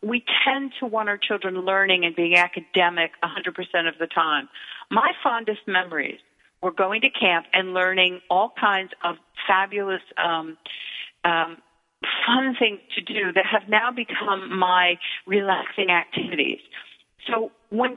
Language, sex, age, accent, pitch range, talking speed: English, female, 40-59, American, 175-205 Hz, 140 wpm